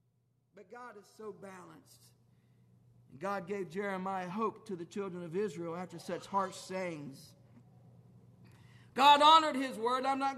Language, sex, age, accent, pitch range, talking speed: English, male, 40-59, American, 245-330 Hz, 140 wpm